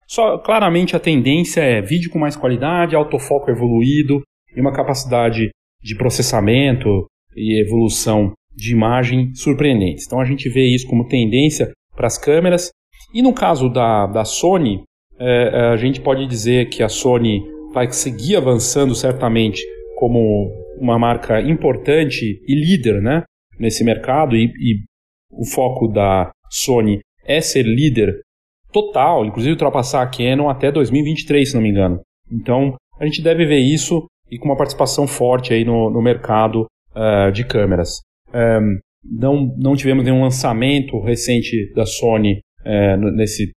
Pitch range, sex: 110-145 Hz, male